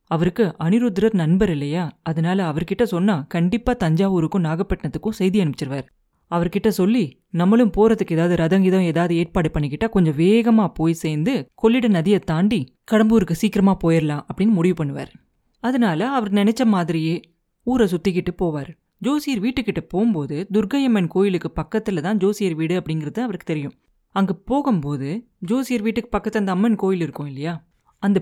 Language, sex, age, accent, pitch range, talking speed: Tamil, female, 30-49, native, 170-225 Hz, 135 wpm